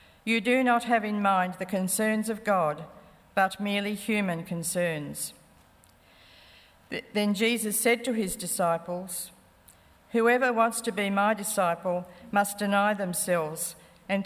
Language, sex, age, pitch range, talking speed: English, female, 50-69, 175-215 Hz, 125 wpm